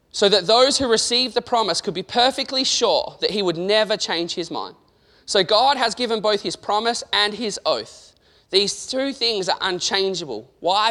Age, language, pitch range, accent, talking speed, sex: 20-39, English, 180-225 Hz, Australian, 185 wpm, male